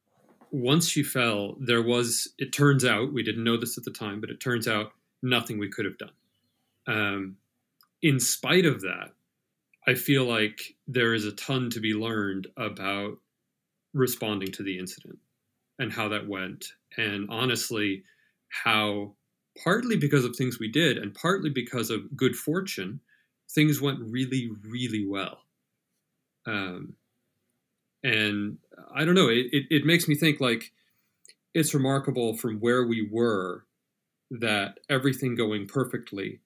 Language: English